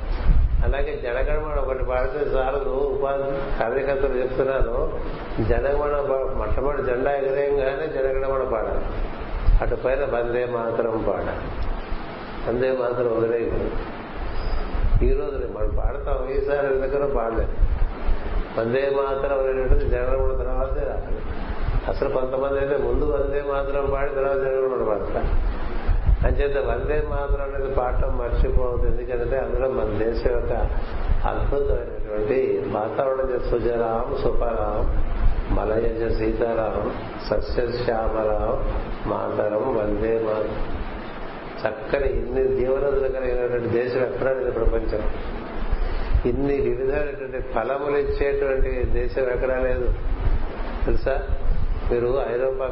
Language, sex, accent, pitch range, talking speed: Telugu, male, native, 115-140 Hz, 95 wpm